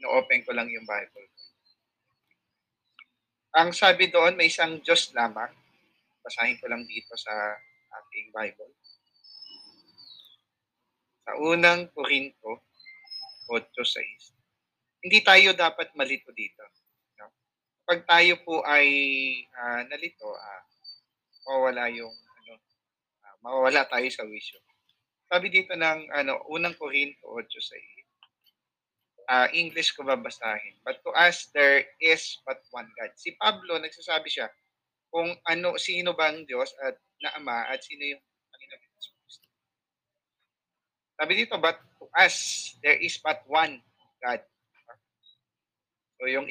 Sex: male